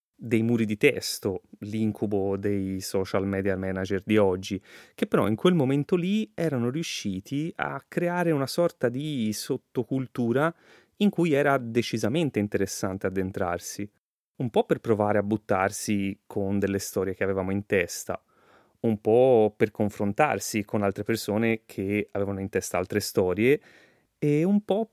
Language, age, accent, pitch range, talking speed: Italian, 30-49, native, 95-125 Hz, 145 wpm